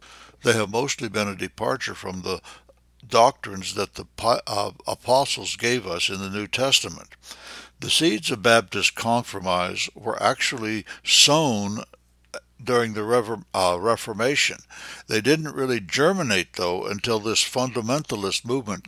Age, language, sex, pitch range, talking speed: 60-79, English, male, 95-120 Hz, 120 wpm